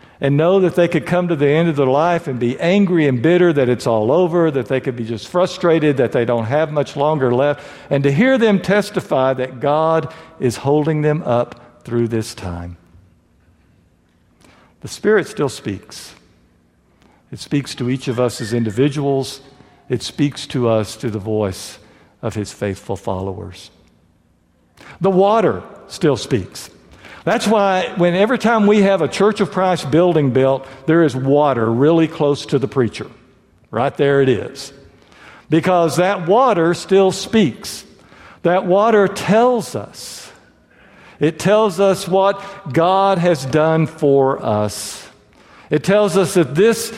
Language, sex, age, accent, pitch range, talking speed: English, male, 60-79, American, 125-180 Hz, 155 wpm